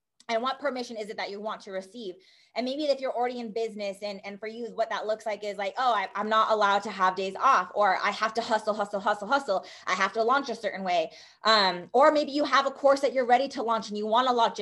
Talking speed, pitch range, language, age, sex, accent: 275 wpm, 220-275 Hz, English, 20-39, female, American